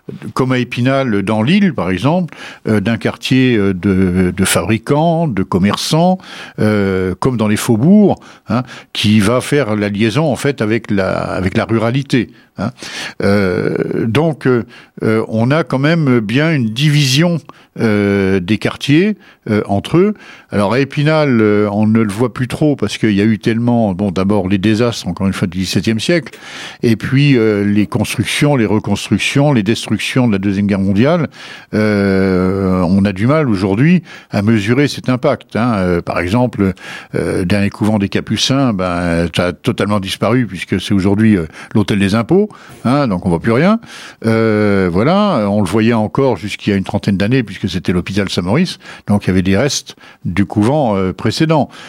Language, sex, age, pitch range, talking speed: French, male, 60-79, 100-135 Hz, 180 wpm